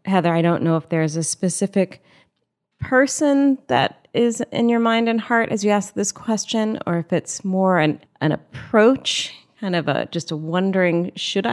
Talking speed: 180 wpm